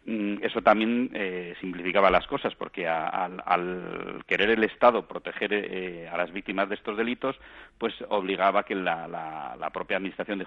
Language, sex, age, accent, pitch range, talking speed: Spanish, male, 40-59, Spanish, 85-110 Hz, 170 wpm